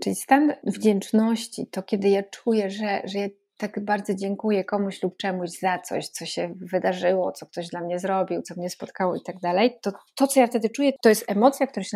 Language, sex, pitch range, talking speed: Polish, female, 195-230 Hz, 215 wpm